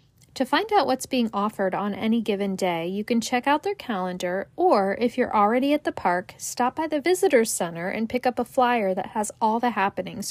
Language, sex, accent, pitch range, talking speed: English, female, American, 195-255 Hz, 220 wpm